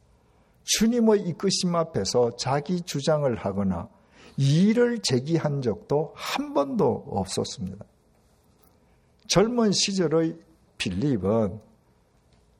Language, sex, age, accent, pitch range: Korean, male, 50-69, native, 105-175 Hz